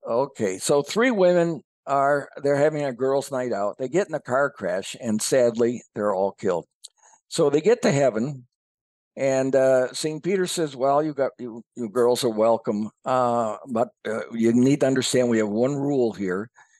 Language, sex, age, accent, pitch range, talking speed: English, male, 60-79, American, 115-160 Hz, 180 wpm